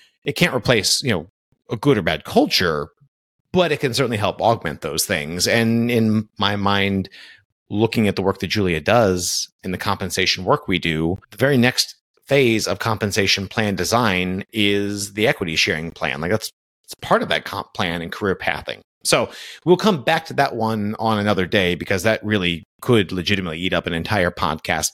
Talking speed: 190 wpm